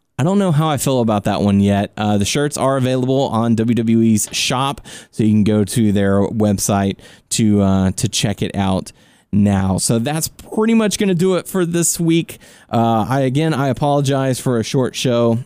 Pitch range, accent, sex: 105-135 Hz, American, male